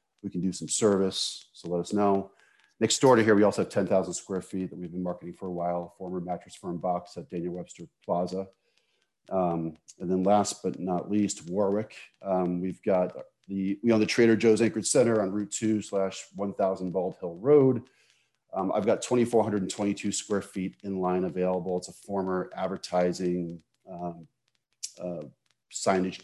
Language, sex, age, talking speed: English, male, 40-59, 175 wpm